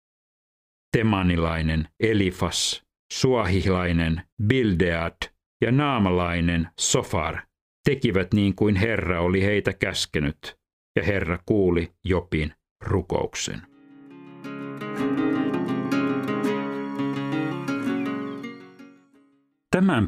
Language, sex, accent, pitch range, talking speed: Finnish, male, native, 85-110 Hz, 60 wpm